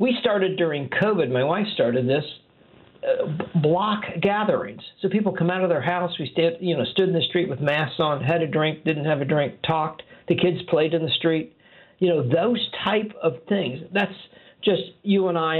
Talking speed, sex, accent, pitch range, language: 210 wpm, male, American, 145-190 Hz, English